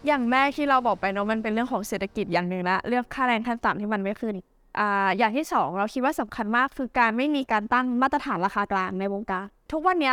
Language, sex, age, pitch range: Thai, female, 20-39, 210-270 Hz